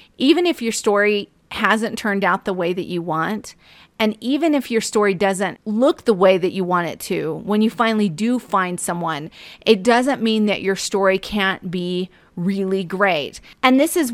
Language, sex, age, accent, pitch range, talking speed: English, female, 30-49, American, 190-235 Hz, 190 wpm